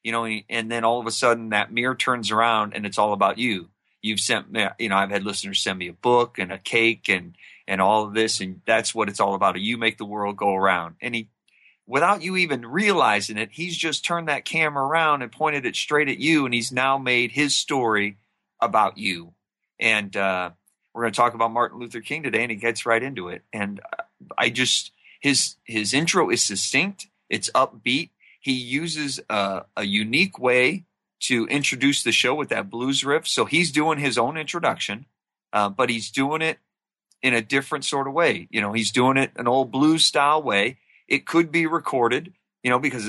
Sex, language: male, English